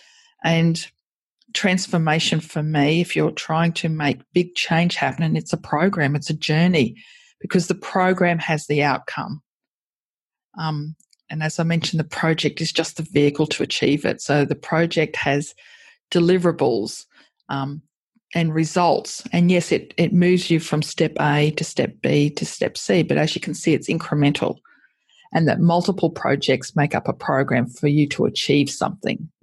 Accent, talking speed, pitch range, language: Australian, 165 wpm, 150-175 Hz, English